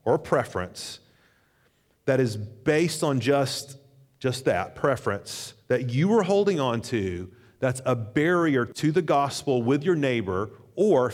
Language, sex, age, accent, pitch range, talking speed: English, male, 40-59, American, 115-150 Hz, 140 wpm